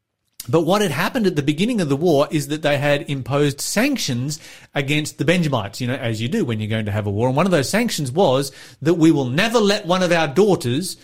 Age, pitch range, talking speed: 30-49, 120-170 Hz, 250 wpm